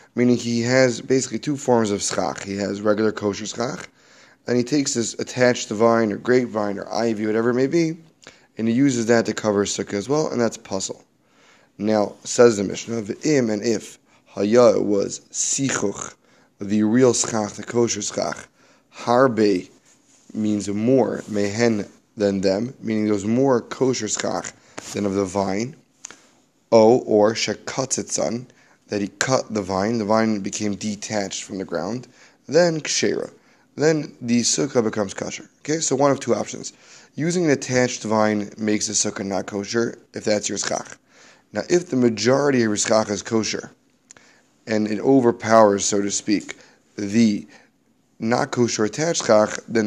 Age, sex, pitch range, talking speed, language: 20-39, male, 105-125 Hz, 160 wpm, English